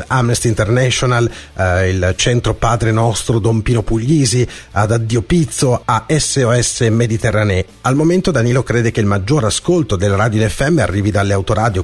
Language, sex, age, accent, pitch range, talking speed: Italian, male, 40-59, native, 100-130 Hz, 155 wpm